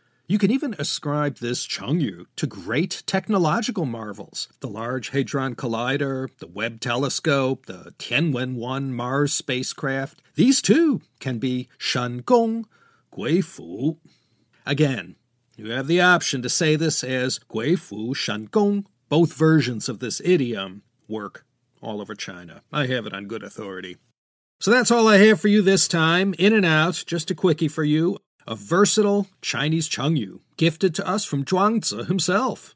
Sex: male